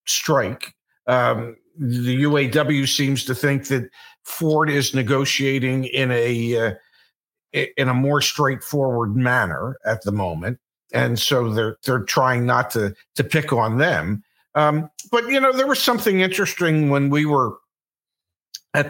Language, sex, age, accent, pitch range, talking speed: English, male, 50-69, American, 120-160 Hz, 145 wpm